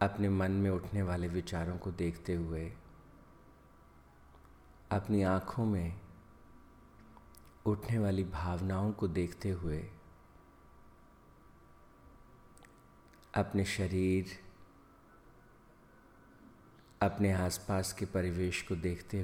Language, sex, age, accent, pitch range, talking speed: Hindi, male, 50-69, native, 80-95 Hz, 80 wpm